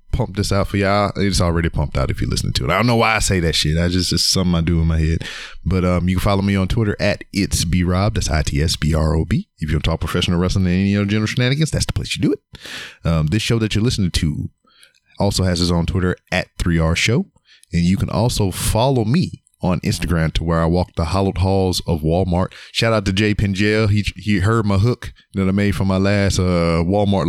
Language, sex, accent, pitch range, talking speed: English, male, American, 85-100 Hz, 245 wpm